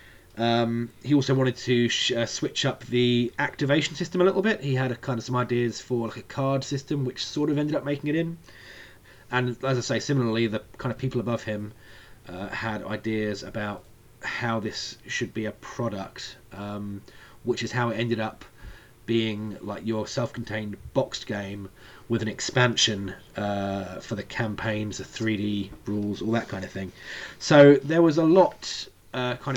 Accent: British